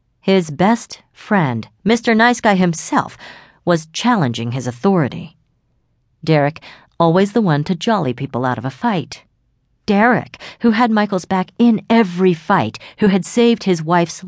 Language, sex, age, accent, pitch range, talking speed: English, female, 40-59, American, 125-185 Hz, 145 wpm